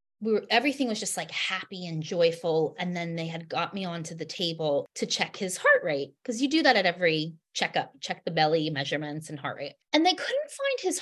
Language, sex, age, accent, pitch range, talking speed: English, female, 20-39, American, 175-280 Hz, 225 wpm